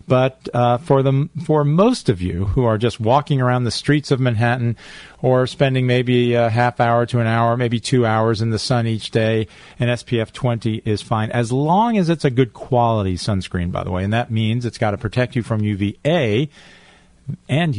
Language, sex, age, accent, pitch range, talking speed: English, male, 40-59, American, 110-145 Hz, 205 wpm